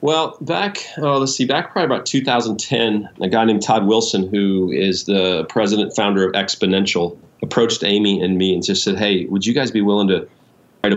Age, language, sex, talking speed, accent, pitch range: 40-59, English, male, 195 wpm, American, 100-125 Hz